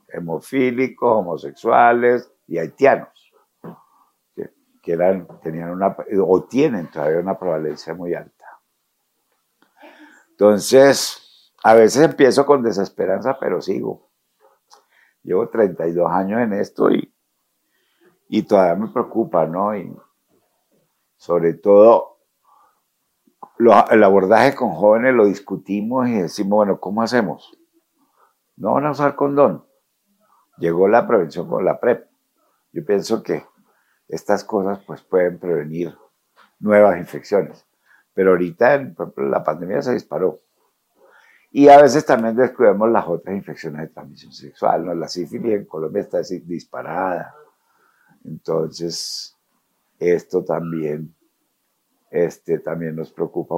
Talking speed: 105 wpm